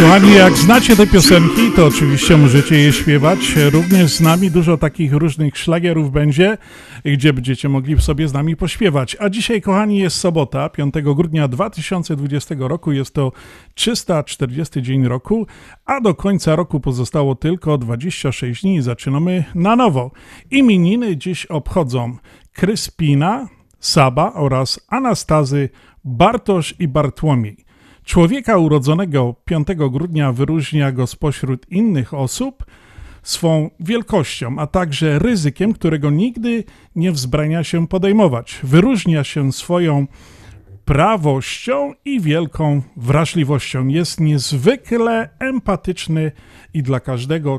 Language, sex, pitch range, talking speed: Polish, male, 140-185 Hz, 120 wpm